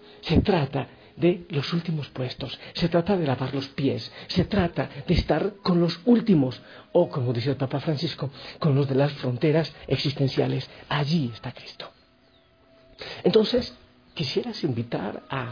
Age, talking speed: 50-69, 145 wpm